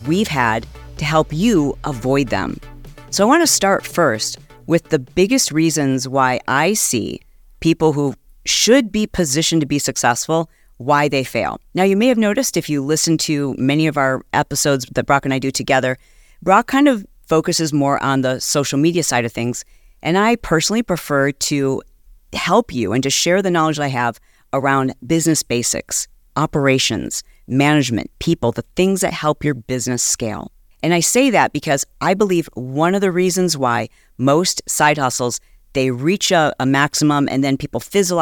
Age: 40-59